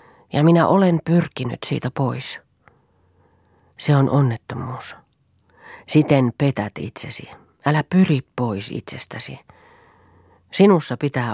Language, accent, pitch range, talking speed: Finnish, native, 115-155 Hz, 95 wpm